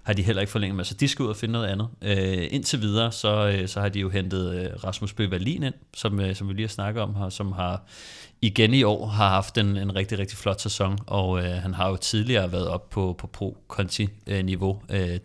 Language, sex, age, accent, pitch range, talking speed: Danish, male, 30-49, native, 95-105 Hz, 240 wpm